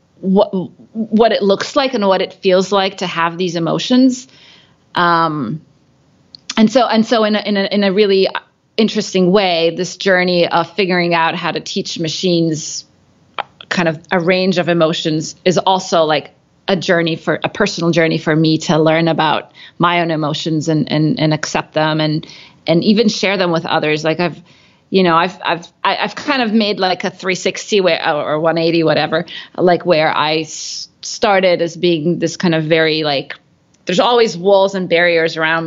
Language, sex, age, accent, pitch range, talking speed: English, female, 30-49, American, 160-195 Hz, 175 wpm